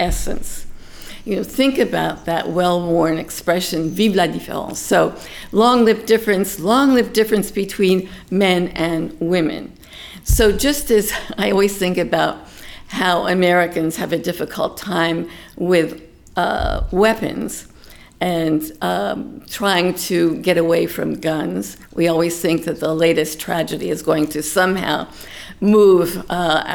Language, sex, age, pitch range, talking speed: English, female, 50-69, 165-200 Hz, 130 wpm